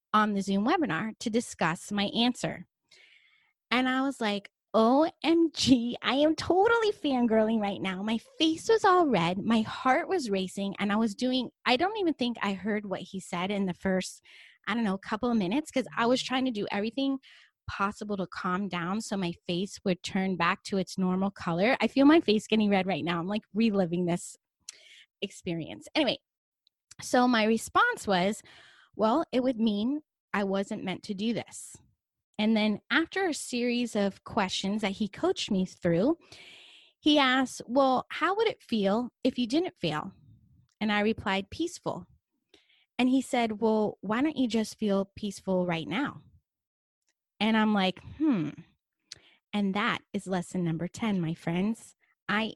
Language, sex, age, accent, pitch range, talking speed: English, female, 20-39, American, 195-260 Hz, 170 wpm